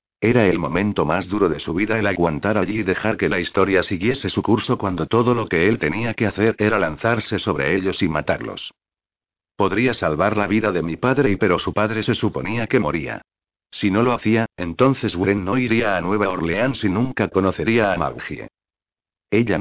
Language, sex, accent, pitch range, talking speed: Spanish, male, Spanish, 95-115 Hz, 200 wpm